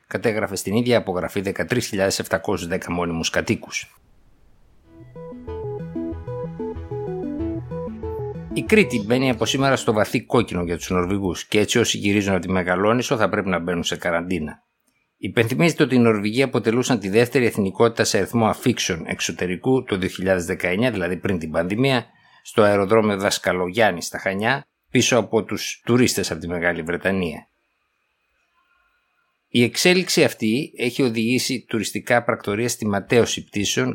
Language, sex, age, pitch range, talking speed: Greek, male, 60-79, 90-120 Hz, 125 wpm